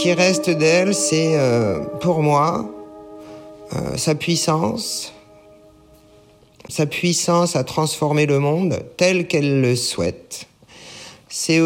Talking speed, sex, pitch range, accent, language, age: 115 wpm, male, 130-165 Hz, French, French, 50-69